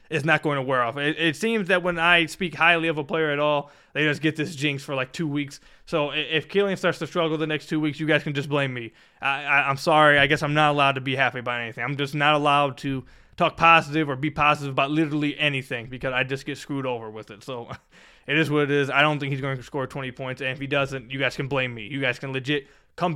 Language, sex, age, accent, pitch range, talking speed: English, male, 20-39, American, 140-175 Hz, 280 wpm